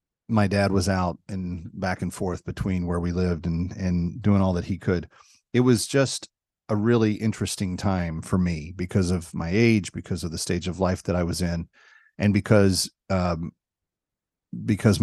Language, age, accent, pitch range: English, 40-59, American, 90-105 Hz